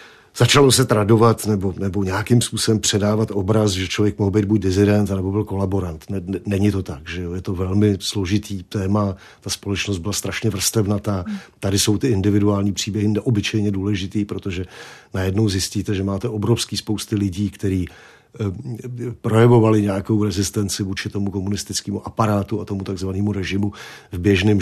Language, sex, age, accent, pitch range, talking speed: Czech, male, 50-69, native, 95-110 Hz, 160 wpm